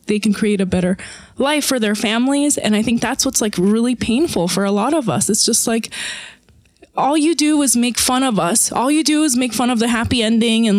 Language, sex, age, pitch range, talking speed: English, female, 20-39, 235-315 Hz, 245 wpm